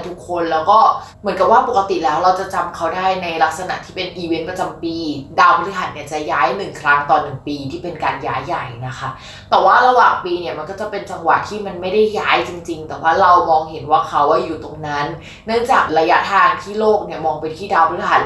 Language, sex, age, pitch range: Thai, female, 20-39, 165-225 Hz